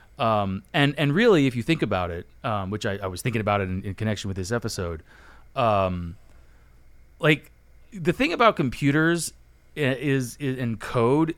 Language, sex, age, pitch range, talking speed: English, male, 30-49, 100-135 Hz, 175 wpm